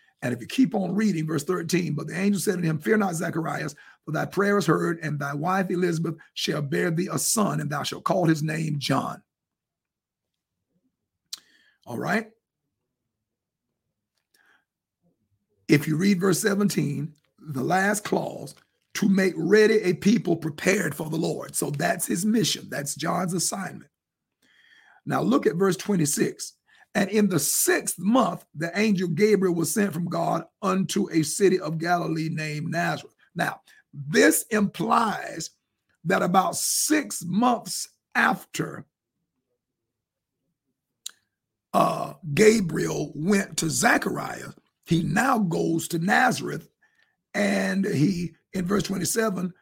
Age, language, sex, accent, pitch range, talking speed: 50-69, English, male, American, 160-205 Hz, 135 wpm